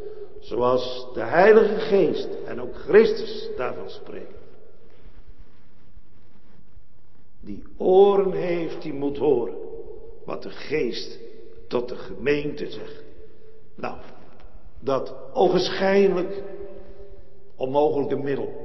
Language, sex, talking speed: Dutch, male, 85 wpm